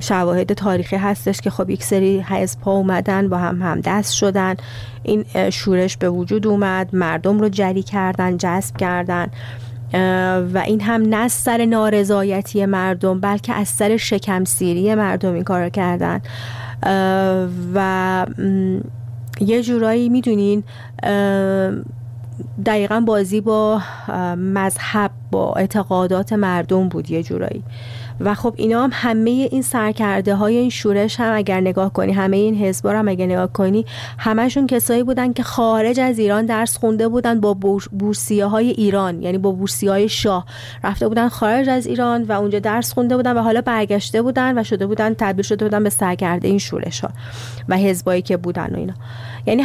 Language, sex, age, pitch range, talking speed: Persian, female, 30-49, 185-220 Hz, 150 wpm